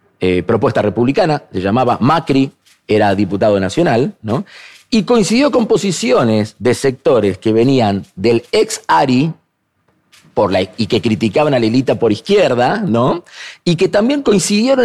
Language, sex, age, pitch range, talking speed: Spanish, male, 40-59, 105-155 Hz, 140 wpm